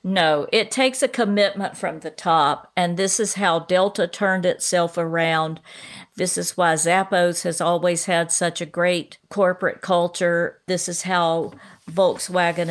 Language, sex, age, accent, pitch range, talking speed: English, female, 50-69, American, 175-195 Hz, 150 wpm